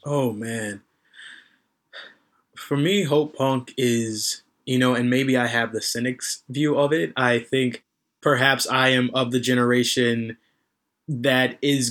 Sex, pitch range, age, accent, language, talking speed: male, 125-150 Hz, 20-39, American, English, 140 wpm